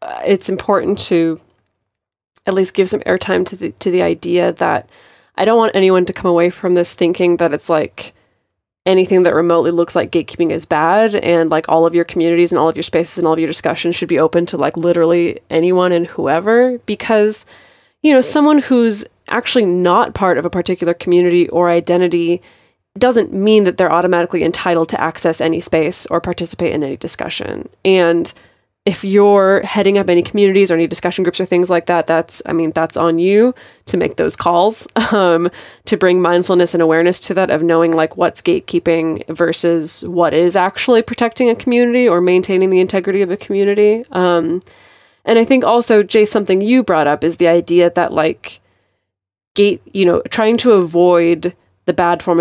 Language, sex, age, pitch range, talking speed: English, female, 20-39, 170-200 Hz, 190 wpm